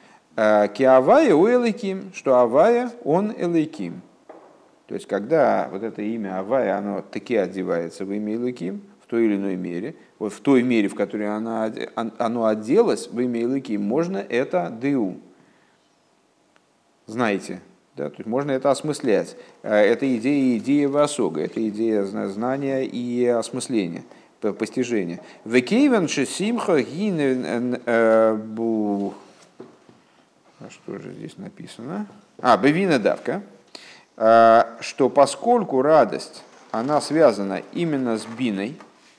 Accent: native